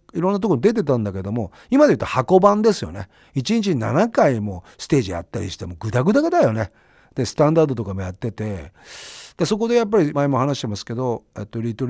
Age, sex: 40-59, male